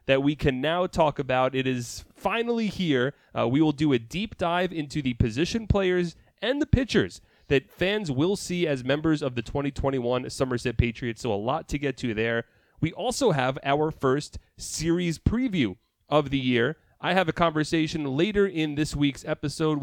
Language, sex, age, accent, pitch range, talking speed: English, male, 30-49, American, 125-170 Hz, 185 wpm